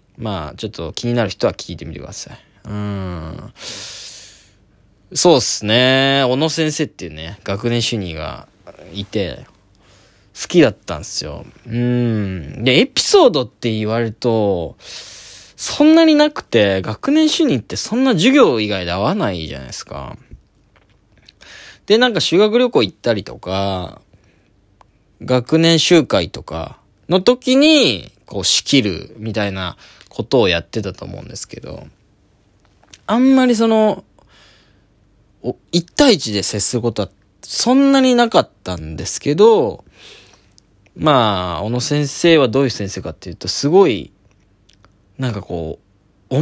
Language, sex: Japanese, male